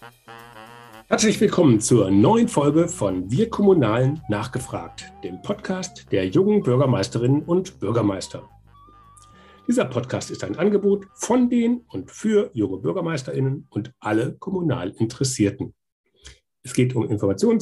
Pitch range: 110-170 Hz